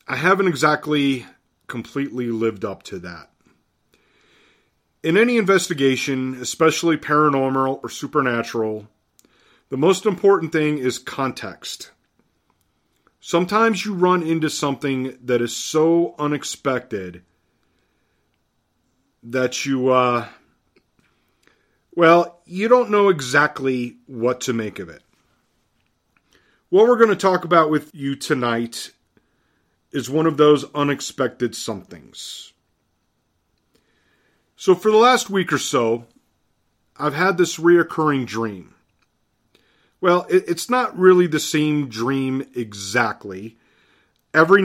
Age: 40-59